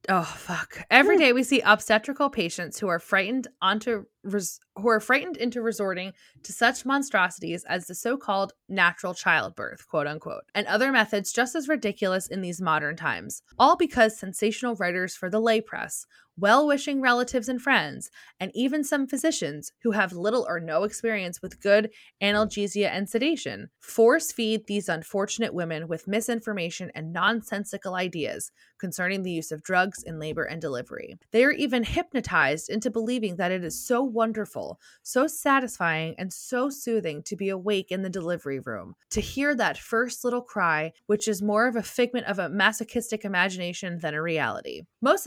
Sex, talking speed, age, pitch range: female, 170 wpm, 20-39, 175-235 Hz